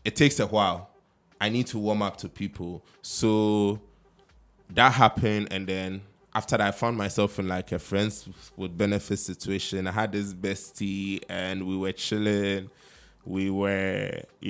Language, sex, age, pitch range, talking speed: English, male, 20-39, 95-110 Hz, 155 wpm